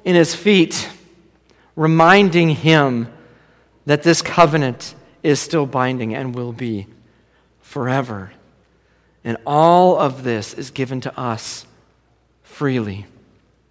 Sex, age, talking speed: male, 50-69, 105 wpm